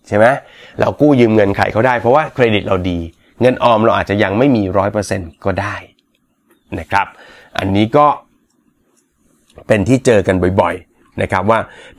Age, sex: 30-49, male